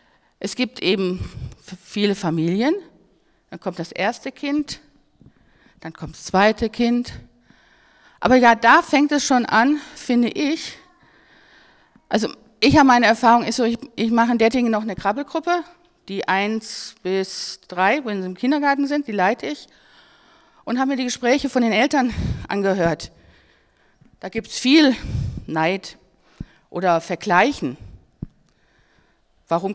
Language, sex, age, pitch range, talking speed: German, female, 50-69, 180-245 Hz, 135 wpm